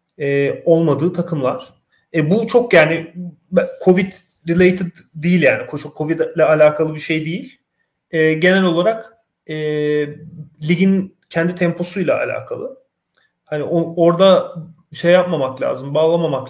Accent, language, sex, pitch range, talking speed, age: native, Turkish, male, 150-180 Hz, 115 wpm, 30-49